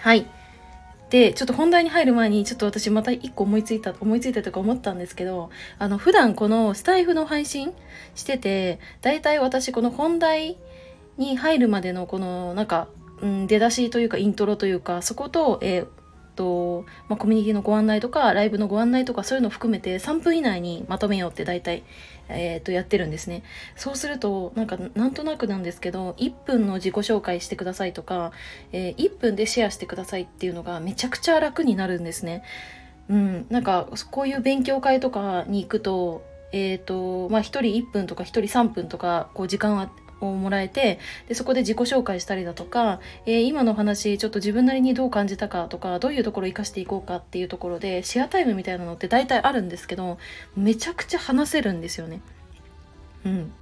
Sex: female